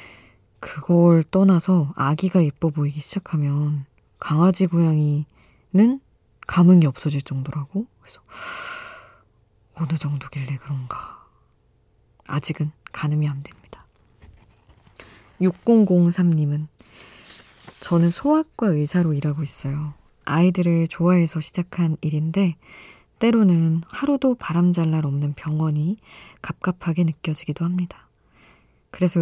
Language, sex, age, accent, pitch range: Korean, female, 20-39, native, 145-180 Hz